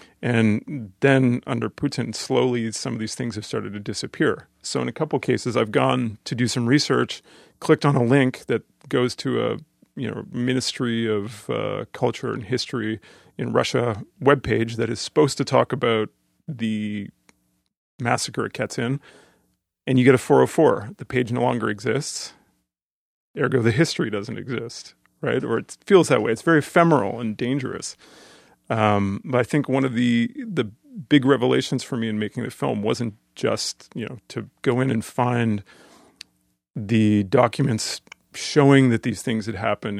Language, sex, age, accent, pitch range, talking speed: English, male, 40-59, American, 110-130 Hz, 170 wpm